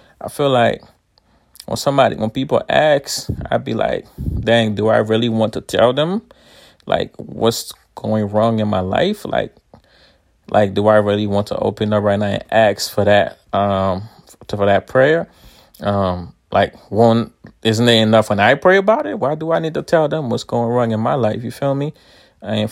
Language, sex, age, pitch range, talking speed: English, male, 20-39, 105-120 Hz, 195 wpm